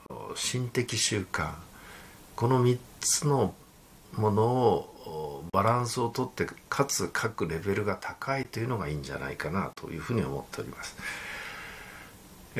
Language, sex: Japanese, male